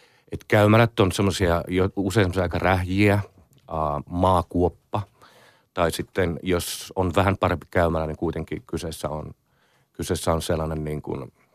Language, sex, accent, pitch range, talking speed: Finnish, male, native, 80-100 Hz, 100 wpm